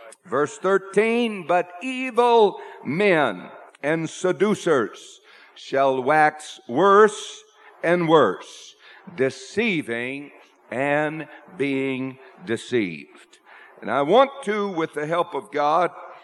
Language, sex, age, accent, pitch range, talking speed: English, male, 60-79, American, 125-170 Hz, 90 wpm